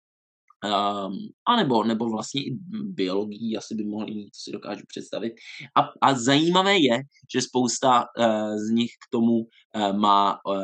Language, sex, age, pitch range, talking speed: Czech, male, 20-39, 105-130 Hz, 160 wpm